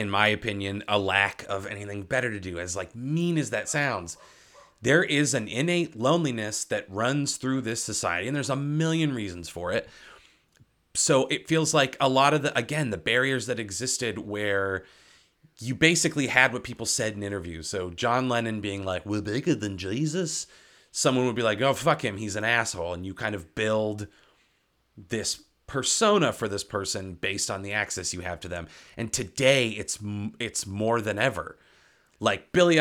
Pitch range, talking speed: 100-140 Hz, 185 wpm